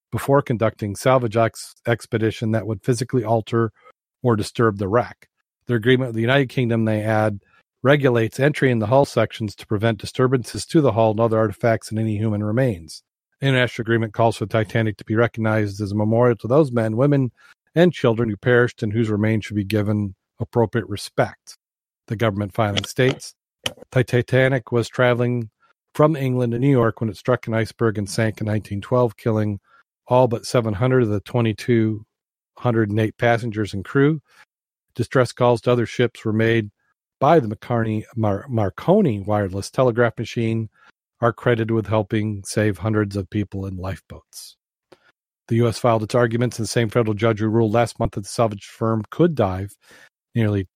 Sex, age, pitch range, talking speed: male, 40-59, 105-120 Hz, 175 wpm